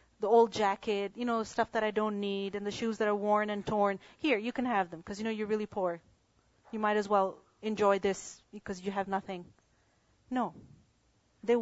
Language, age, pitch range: English, 30-49, 200-260 Hz